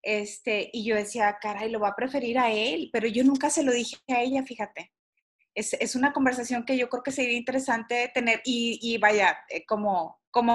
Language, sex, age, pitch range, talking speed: Spanish, female, 30-49, 220-275 Hz, 205 wpm